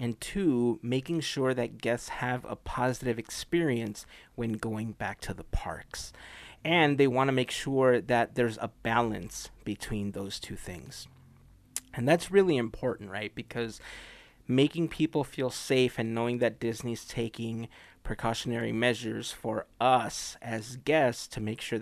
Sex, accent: male, American